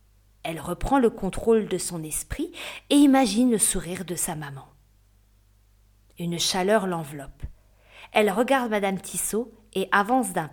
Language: French